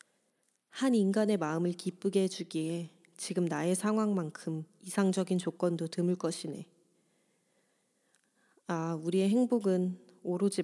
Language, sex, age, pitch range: Korean, female, 20-39, 170-195 Hz